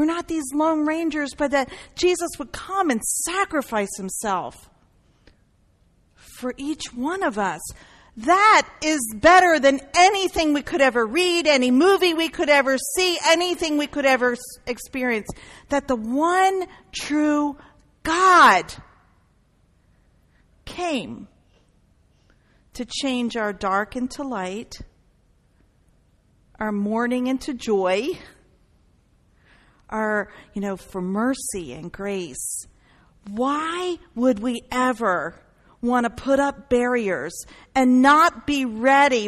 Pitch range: 225-320 Hz